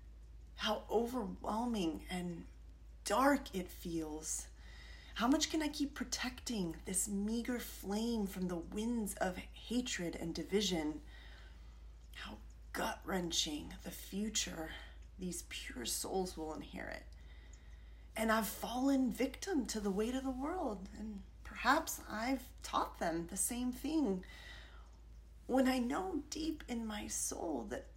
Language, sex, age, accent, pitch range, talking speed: English, female, 30-49, American, 155-245 Hz, 120 wpm